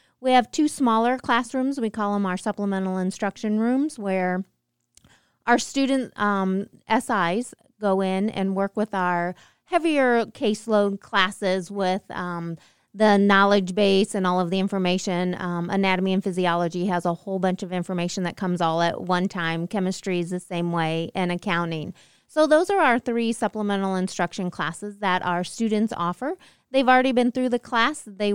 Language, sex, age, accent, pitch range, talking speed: English, female, 30-49, American, 180-220 Hz, 165 wpm